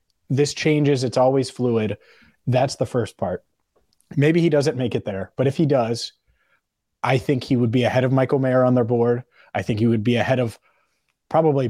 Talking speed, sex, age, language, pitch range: 200 wpm, male, 30-49, English, 115-145 Hz